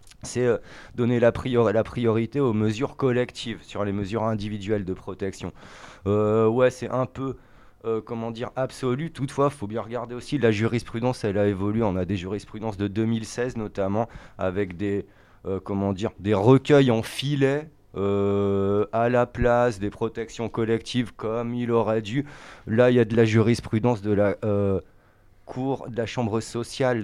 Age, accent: 30-49, French